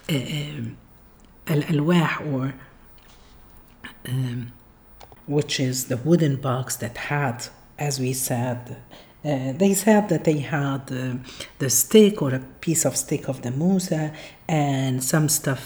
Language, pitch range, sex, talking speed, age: Arabic, 130-170 Hz, female, 135 wpm, 50-69